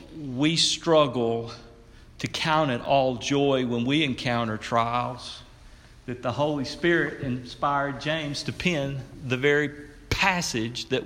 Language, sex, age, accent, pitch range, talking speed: English, male, 50-69, American, 115-155 Hz, 125 wpm